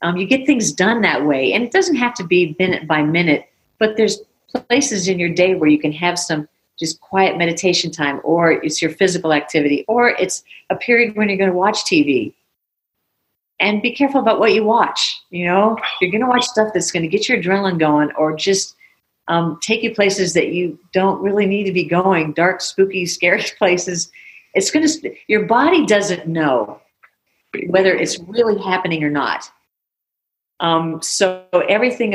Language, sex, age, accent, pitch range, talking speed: English, female, 50-69, American, 165-220 Hz, 190 wpm